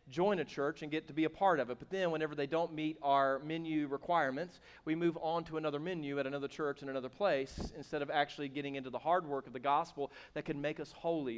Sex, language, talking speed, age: male, English, 255 wpm, 40-59